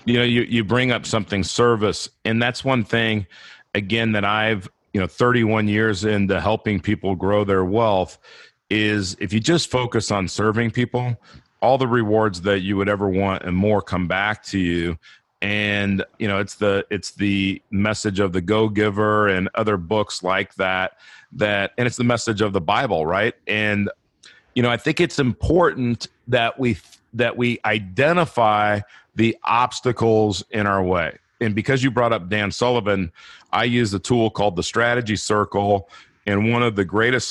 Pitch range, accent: 100-115 Hz, American